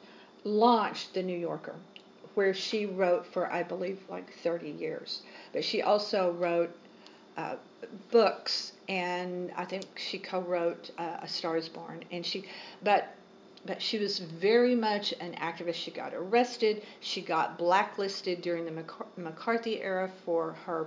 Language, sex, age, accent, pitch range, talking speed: English, female, 50-69, American, 175-225 Hz, 150 wpm